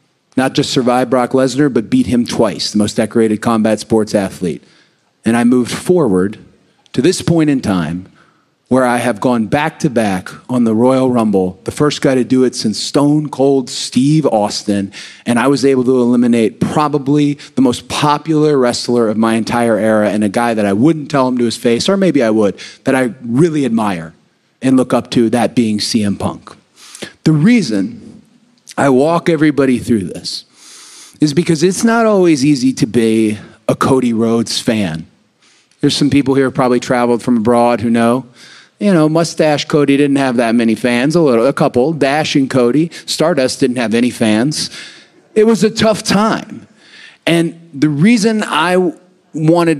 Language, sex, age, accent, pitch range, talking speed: English, male, 30-49, American, 120-155 Hz, 180 wpm